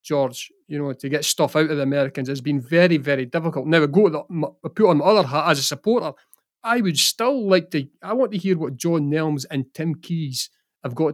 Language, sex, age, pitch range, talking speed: English, male, 30-49, 145-185 Hz, 250 wpm